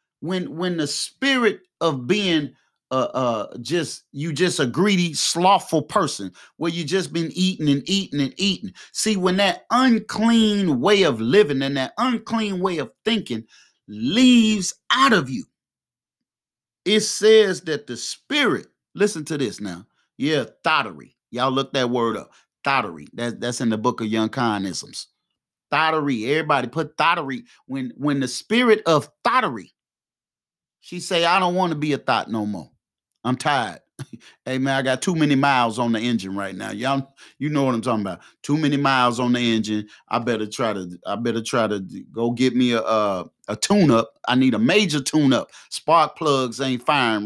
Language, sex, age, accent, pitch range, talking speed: English, male, 30-49, American, 120-190 Hz, 180 wpm